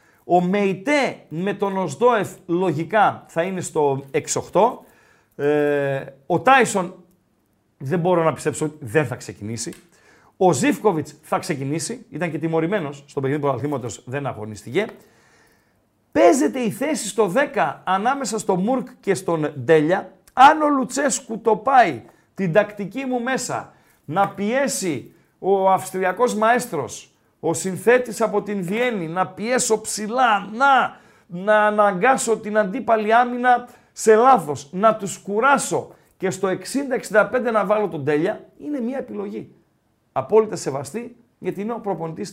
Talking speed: 130 wpm